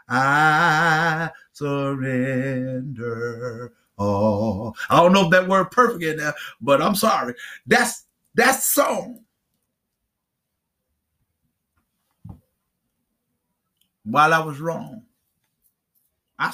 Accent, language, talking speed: American, English, 80 wpm